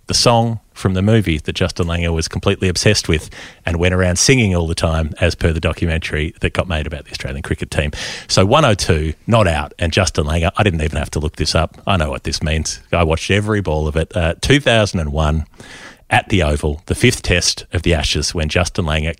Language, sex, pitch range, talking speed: English, male, 80-105 Hz, 220 wpm